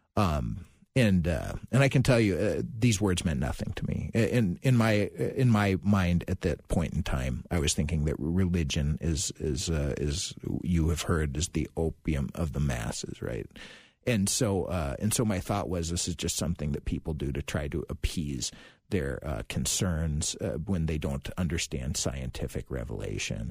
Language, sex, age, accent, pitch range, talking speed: English, male, 40-59, American, 75-105 Hz, 190 wpm